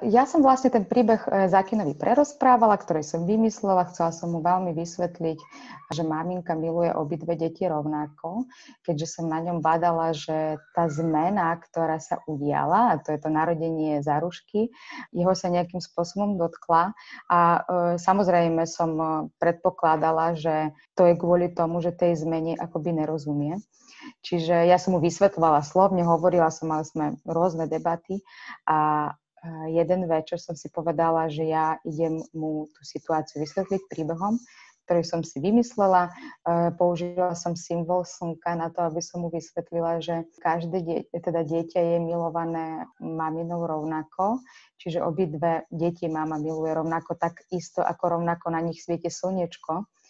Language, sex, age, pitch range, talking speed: Slovak, female, 20-39, 160-180 Hz, 145 wpm